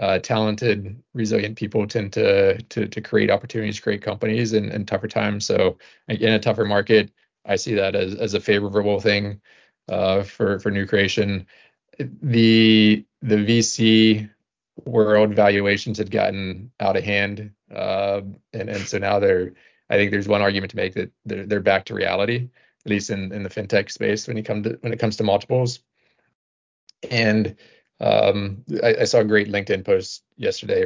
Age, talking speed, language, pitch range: 20-39, 175 wpm, English, 100-115 Hz